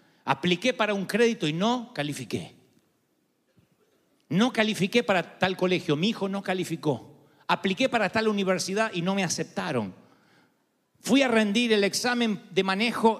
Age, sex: 40-59, male